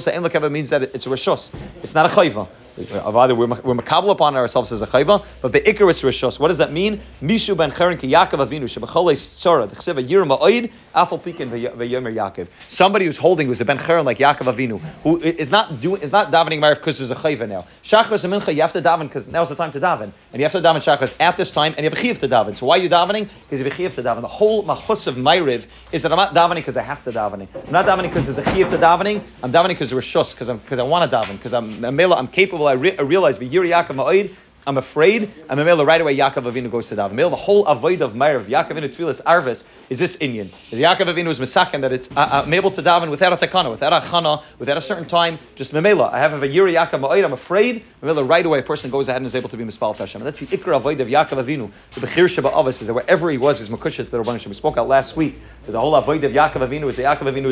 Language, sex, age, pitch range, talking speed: English, male, 30-49, 130-175 Hz, 265 wpm